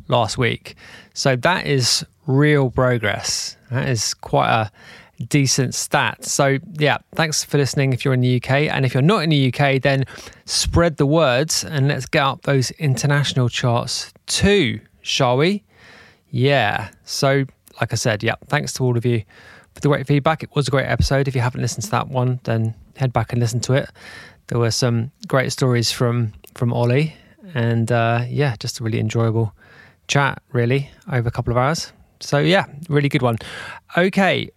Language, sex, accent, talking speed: English, male, British, 185 wpm